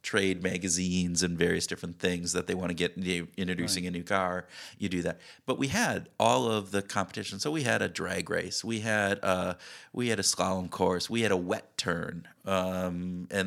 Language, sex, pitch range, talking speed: English, male, 90-105 Hz, 205 wpm